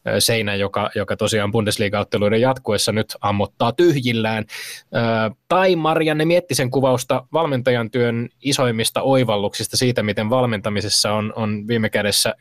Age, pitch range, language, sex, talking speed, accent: 20-39, 105-125 Hz, Finnish, male, 125 wpm, native